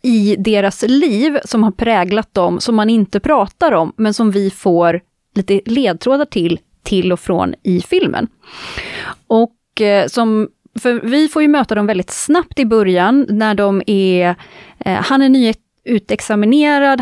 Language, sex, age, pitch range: Swedish, female, 30-49, 195-250 Hz